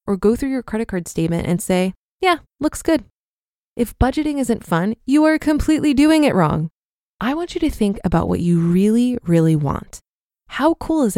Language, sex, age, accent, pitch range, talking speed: English, female, 20-39, American, 185-265 Hz, 190 wpm